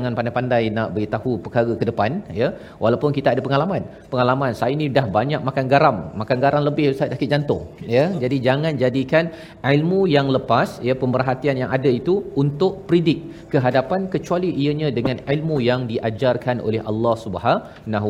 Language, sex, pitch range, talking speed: Malayalam, male, 120-145 Hz, 165 wpm